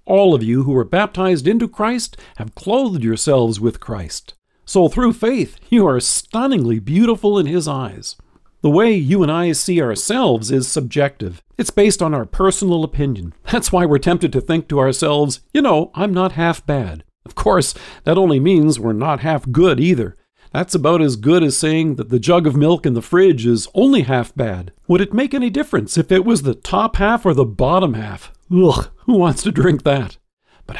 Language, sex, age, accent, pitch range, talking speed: English, male, 50-69, American, 130-185 Hz, 200 wpm